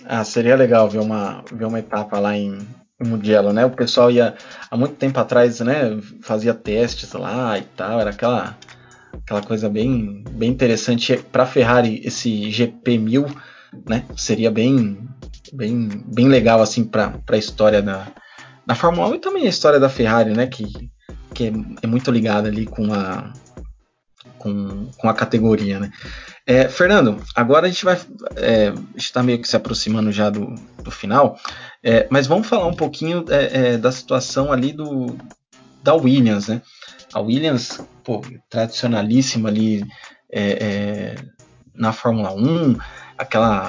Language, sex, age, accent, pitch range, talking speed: Portuguese, male, 20-39, Brazilian, 105-125 Hz, 160 wpm